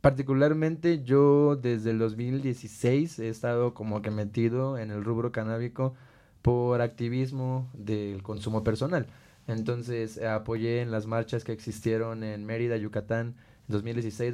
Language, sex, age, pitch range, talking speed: Spanish, male, 20-39, 110-125 Hz, 130 wpm